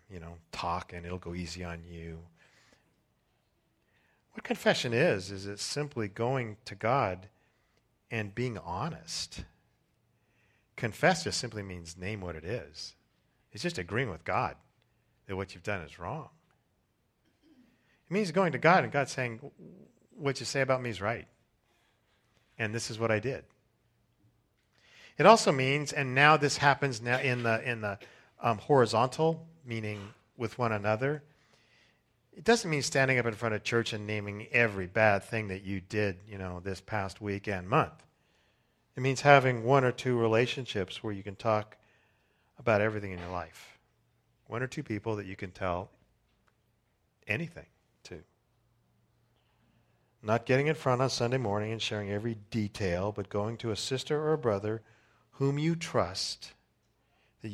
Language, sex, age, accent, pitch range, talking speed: English, male, 40-59, American, 100-130 Hz, 160 wpm